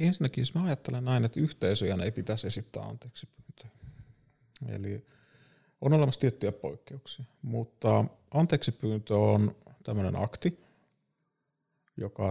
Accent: native